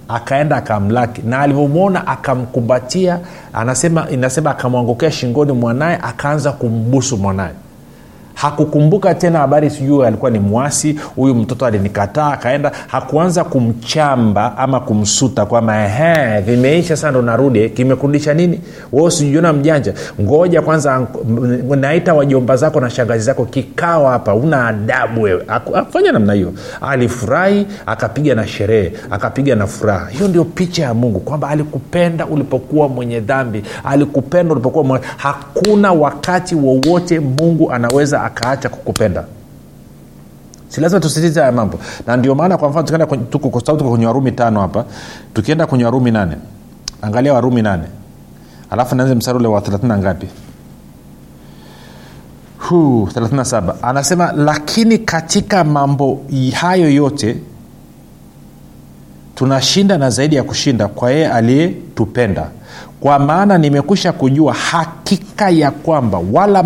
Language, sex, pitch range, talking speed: Swahili, male, 115-155 Hz, 125 wpm